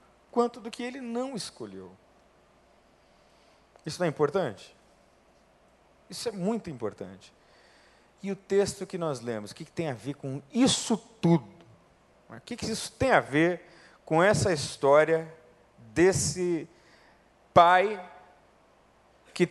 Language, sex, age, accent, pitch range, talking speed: Portuguese, male, 40-59, Brazilian, 135-175 Hz, 125 wpm